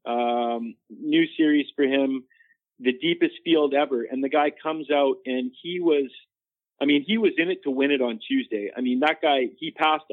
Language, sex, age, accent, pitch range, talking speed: English, male, 40-59, American, 120-165 Hz, 200 wpm